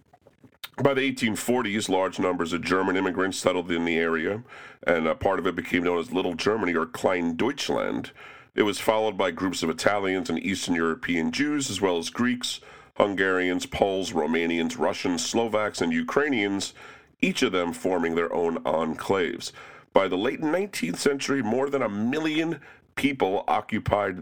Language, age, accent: English, 50-69, American